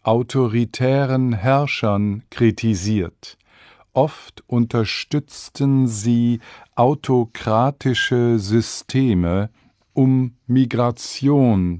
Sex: male